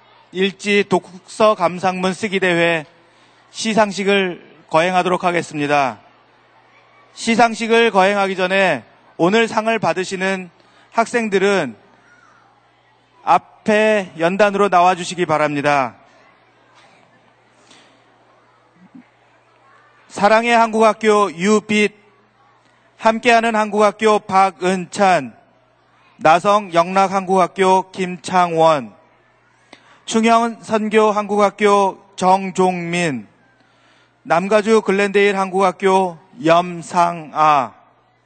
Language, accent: Korean, native